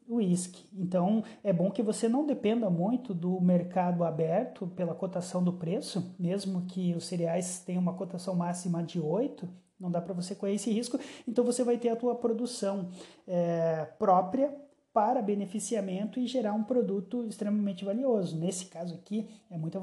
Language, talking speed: Portuguese, 165 wpm